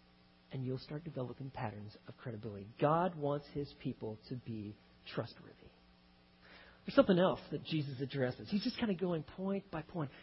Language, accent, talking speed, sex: English, American, 165 wpm, male